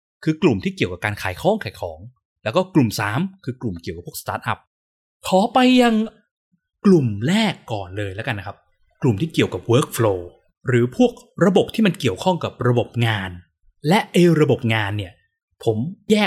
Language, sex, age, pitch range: Thai, male, 20-39, 110-170 Hz